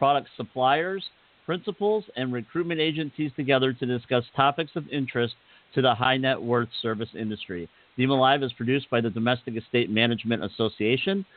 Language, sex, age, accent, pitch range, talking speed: English, male, 50-69, American, 120-145 Hz, 145 wpm